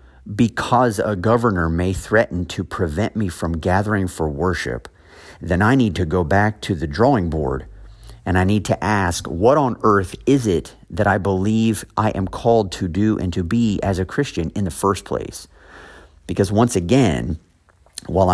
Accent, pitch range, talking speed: American, 85-110 Hz, 175 wpm